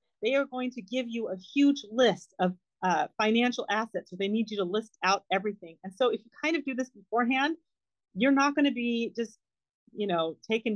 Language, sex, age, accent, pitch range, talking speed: English, female, 40-59, American, 195-240 Hz, 225 wpm